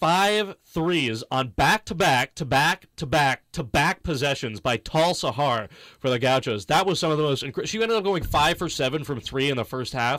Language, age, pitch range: English, 30-49, 125-170 Hz